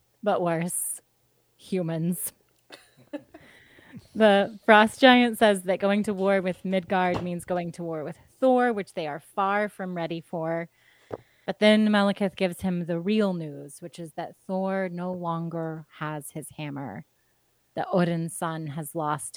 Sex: female